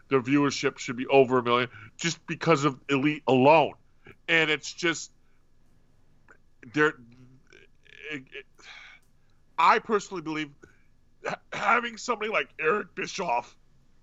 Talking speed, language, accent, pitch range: 105 wpm, English, American, 130-175 Hz